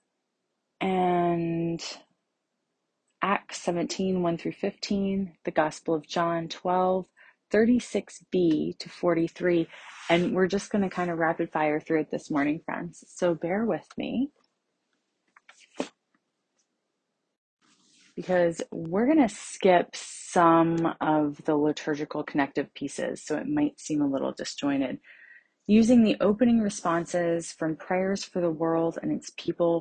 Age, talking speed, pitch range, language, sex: 30-49, 125 wpm, 160-195 Hz, English, female